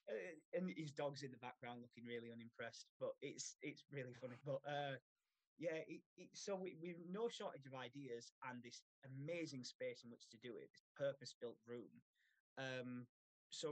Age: 20-39